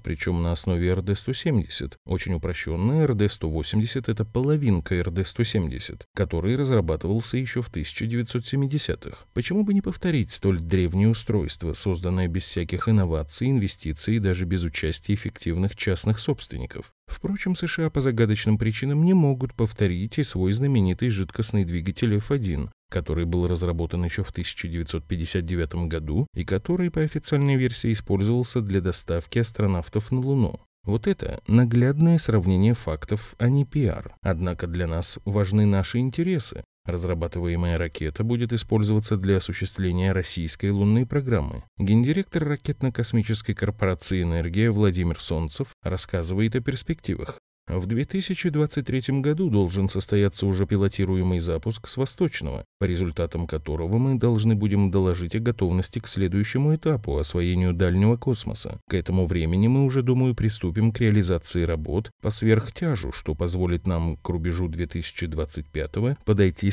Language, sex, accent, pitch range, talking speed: Russian, male, native, 90-120 Hz, 130 wpm